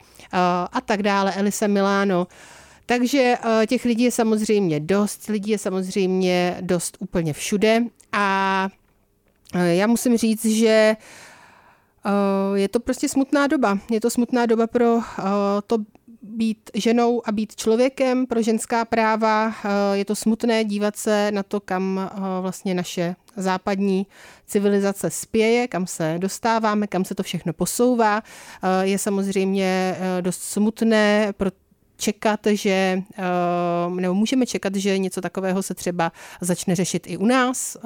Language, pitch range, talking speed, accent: Czech, 185-220 Hz, 130 wpm, native